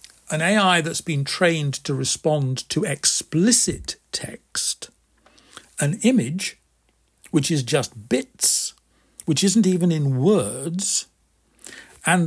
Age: 60-79